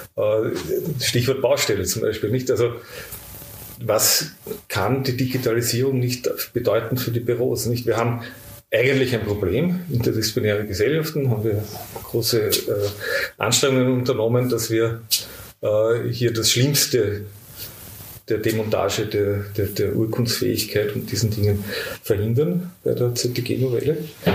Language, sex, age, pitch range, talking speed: German, male, 40-59, 110-130 Hz, 115 wpm